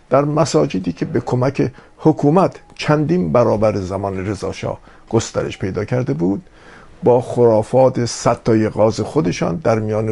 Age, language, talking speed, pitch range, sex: 50-69, Persian, 125 wpm, 100-125 Hz, male